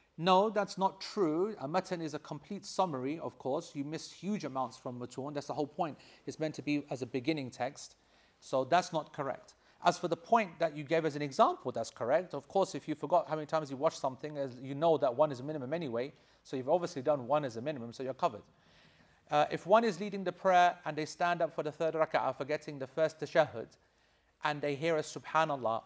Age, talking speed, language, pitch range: 40-59, 235 wpm, English, 145-175 Hz